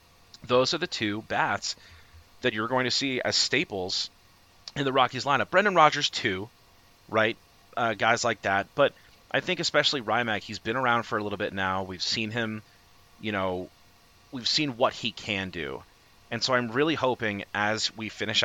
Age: 30-49